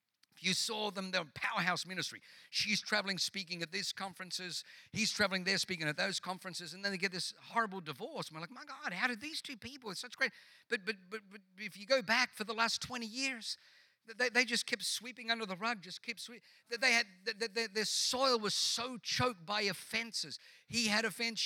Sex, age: male, 50-69